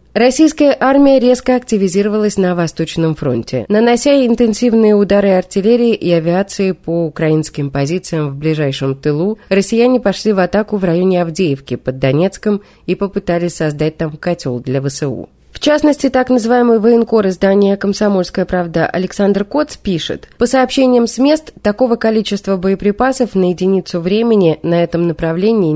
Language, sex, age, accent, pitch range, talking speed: Russian, female, 20-39, native, 165-235 Hz, 135 wpm